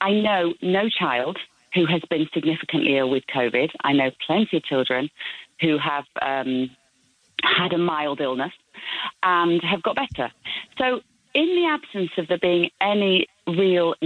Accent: British